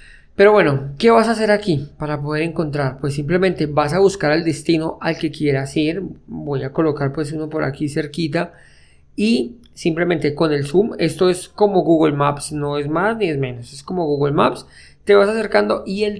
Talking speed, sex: 200 wpm, male